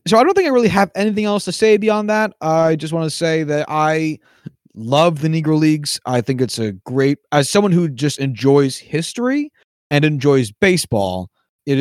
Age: 30-49